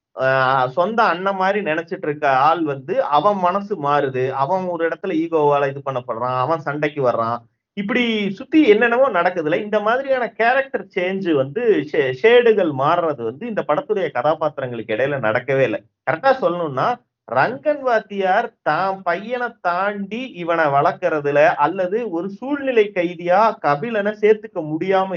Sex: male